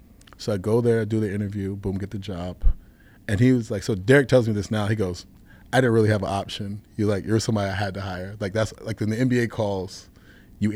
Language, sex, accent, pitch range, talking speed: English, male, American, 95-115 Hz, 250 wpm